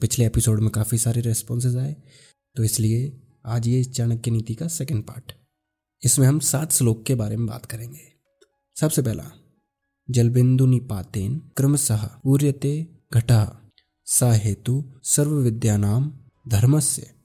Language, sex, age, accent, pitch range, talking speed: Hindi, male, 20-39, native, 110-135 Hz, 120 wpm